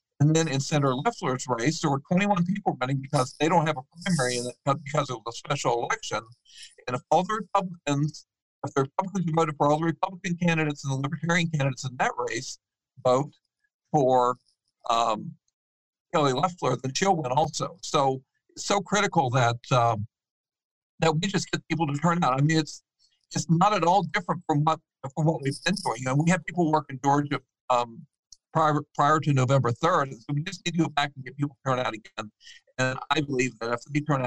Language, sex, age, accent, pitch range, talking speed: English, male, 60-79, American, 130-165 Hz, 210 wpm